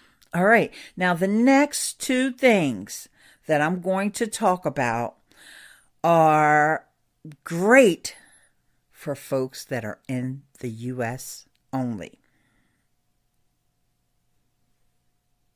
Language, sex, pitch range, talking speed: English, female, 140-200 Hz, 90 wpm